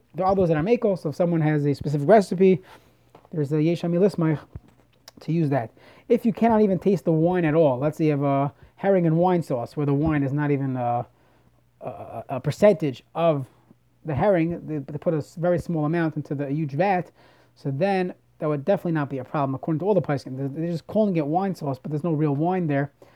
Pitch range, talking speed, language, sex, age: 150-190 Hz, 230 wpm, English, male, 30-49